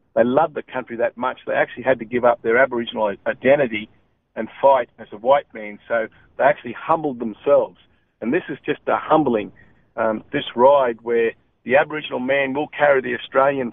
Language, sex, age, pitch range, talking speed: English, male, 50-69, 115-140 Hz, 190 wpm